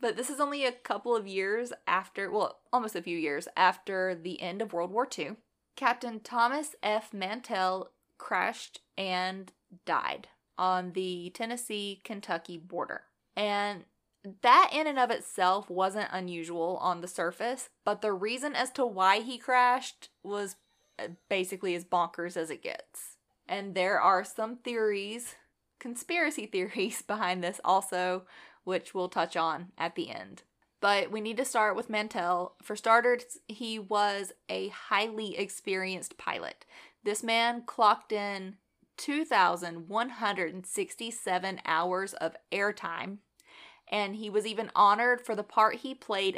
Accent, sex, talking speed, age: American, female, 140 wpm, 20-39